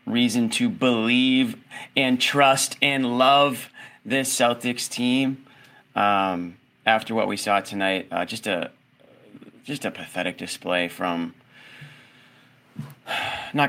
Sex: male